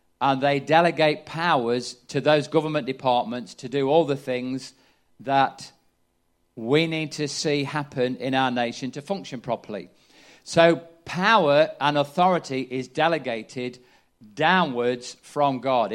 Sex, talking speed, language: male, 130 wpm, English